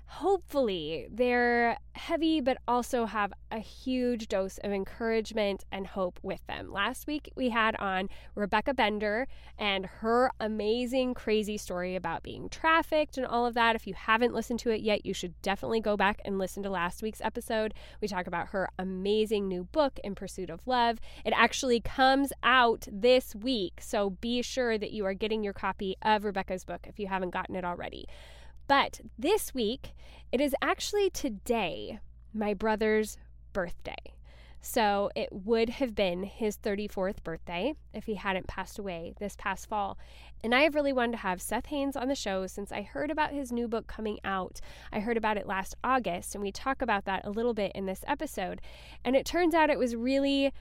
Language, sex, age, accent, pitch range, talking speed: English, female, 10-29, American, 195-250 Hz, 185 wpm